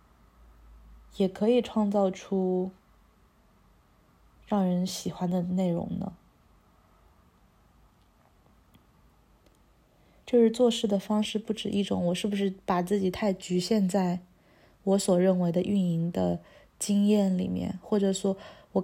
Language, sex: Chinese, female